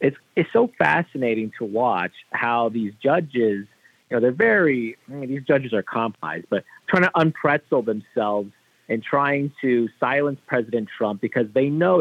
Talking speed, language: 165 wpm, English